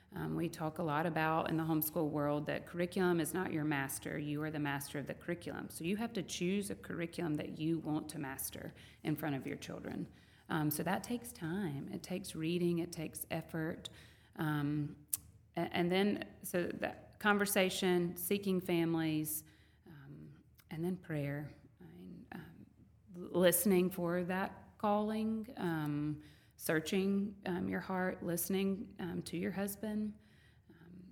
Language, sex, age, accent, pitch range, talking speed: English, female, 30-49, American, 150-180 Hz, 150 wpm